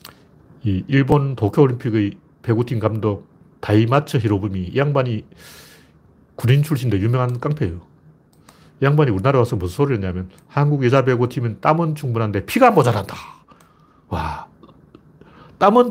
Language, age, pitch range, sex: Korean, 40-59, 105-145 Hz, male